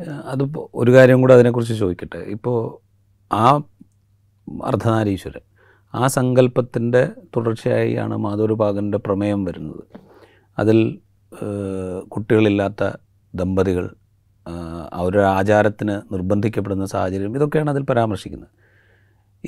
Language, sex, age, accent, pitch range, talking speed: Malayalam, male, 30-49, native, 100-120 Hz, 75 wpm